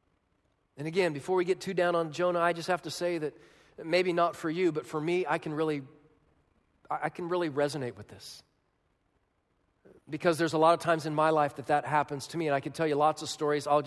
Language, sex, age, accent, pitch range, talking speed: English, male, 40-59, American, 150-170 Hz, 235 wpm